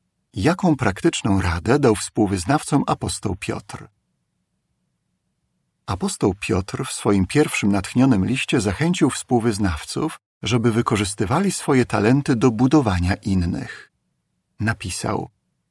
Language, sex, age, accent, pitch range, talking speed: Polish, male, 50-69, native, 100-135 Hz, 90 wpm